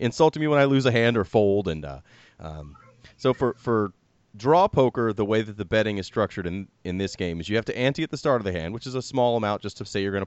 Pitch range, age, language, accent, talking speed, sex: 100-125 Hz, 30-49, English, American, 285 wpm, male